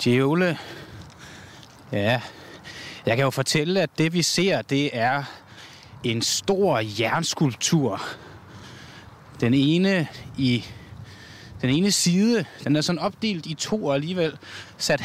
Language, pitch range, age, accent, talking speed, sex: Danish, 115-160 Hz, 20-39, native, 115 wpm, male